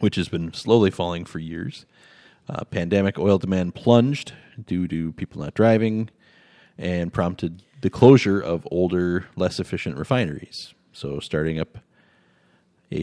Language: English